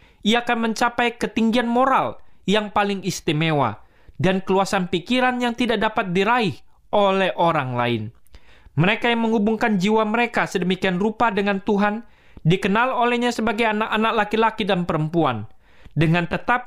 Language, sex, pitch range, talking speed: Indonesian, male, 160-220 Hz, 130 wpm